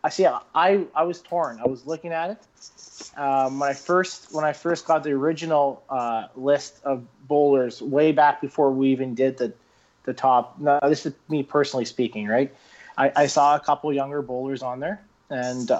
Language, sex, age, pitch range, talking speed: English, male, 30-49, 130-155 Hz, 190 wpm